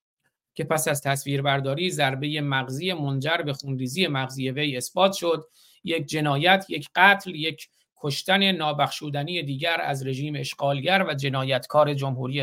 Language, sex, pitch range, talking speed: Persian, male, 135-165 Hz, 130 wpm